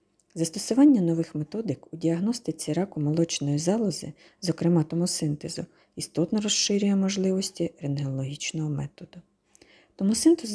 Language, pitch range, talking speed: Ukrainian, 155-200 Hz, 90 wpm